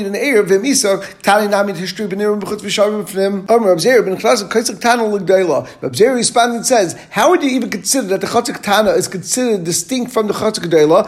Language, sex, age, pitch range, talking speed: English, male, 40-59, 195-240 Hz, 95 wpm